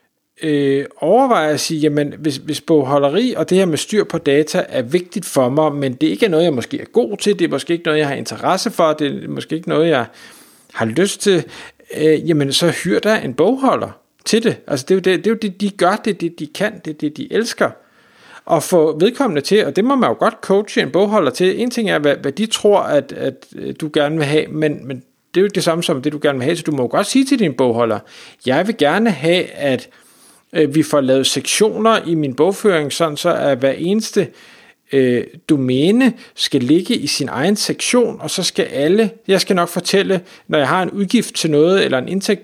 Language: Danish